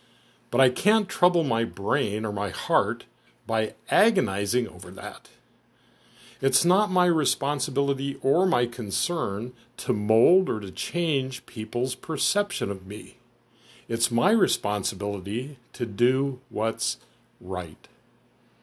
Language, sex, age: English, male, 50-69